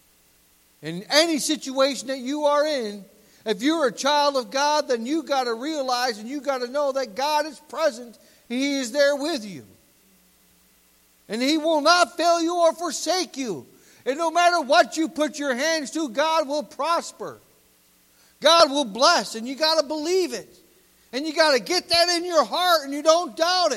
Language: English